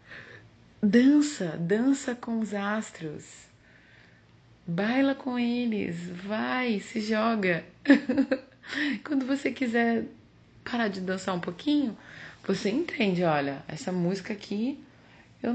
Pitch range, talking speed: 165-230 Hz, 100 wpm